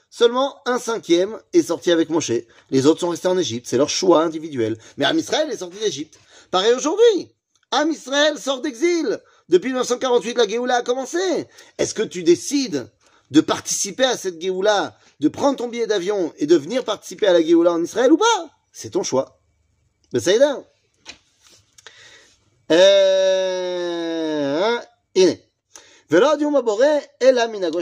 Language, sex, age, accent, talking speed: French, male, 40-59, French, 145 wpm